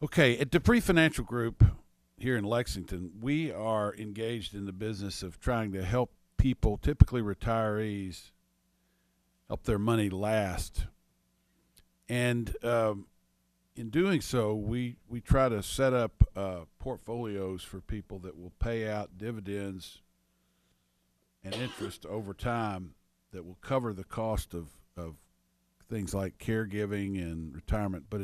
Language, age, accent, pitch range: English, 50-69, American, 80-115 Hz